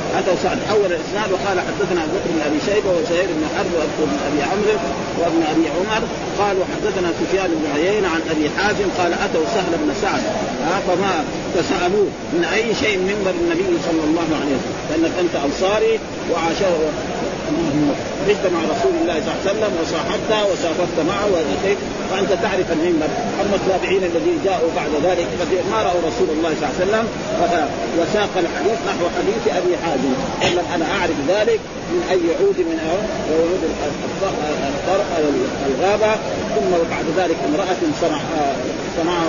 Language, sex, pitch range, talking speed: Arabic, male, 165-205 Hz, 145 wpm